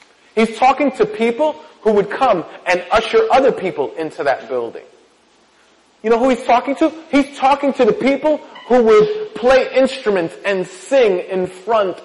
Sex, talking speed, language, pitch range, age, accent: male, 165 wpm, English, 185-280 Hz, 30-49, American